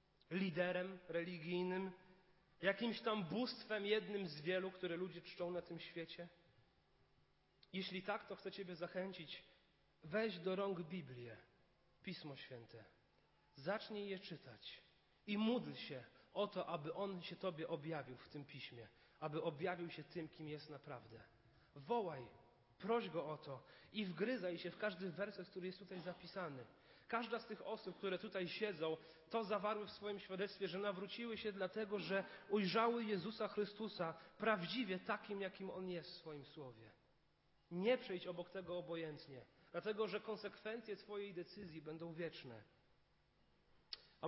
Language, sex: Polish, male